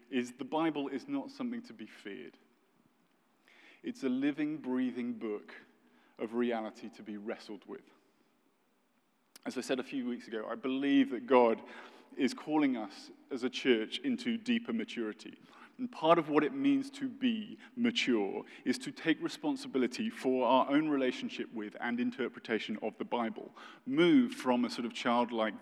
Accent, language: British, English